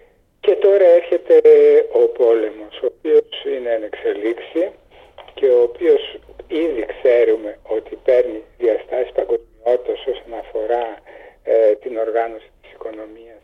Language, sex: Greek, male